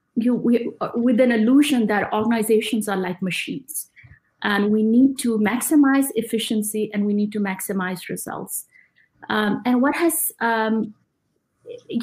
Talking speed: 135 wpm